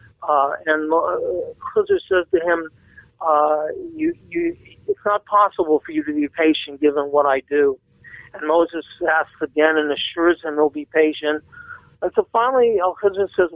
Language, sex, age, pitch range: English, male, 50-69, 145-200 Hz